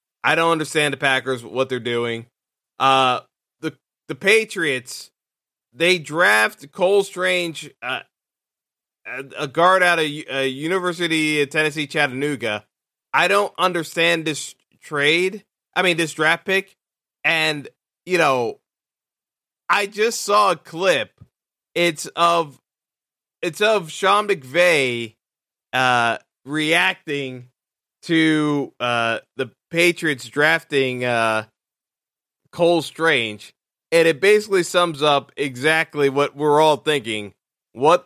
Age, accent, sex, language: 20-39, American, male, English